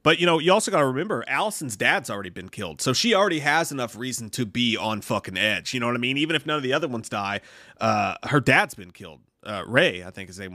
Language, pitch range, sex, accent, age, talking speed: English, 120-180 Hz, male, American, 30-49, 275 wpm